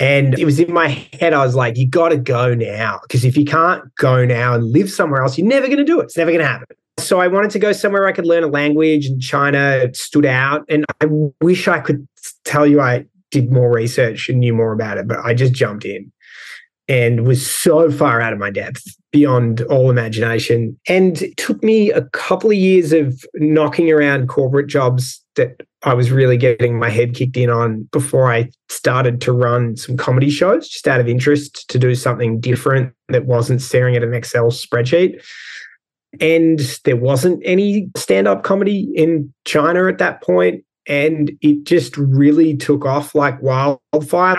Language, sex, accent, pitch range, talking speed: English, male, Australian, 125-160 Hz, 200 wpm